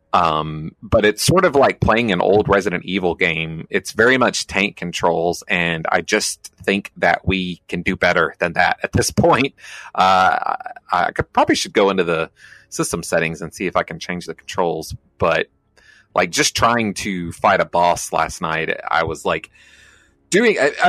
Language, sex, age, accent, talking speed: English, male, 30-49, American, 185 wpm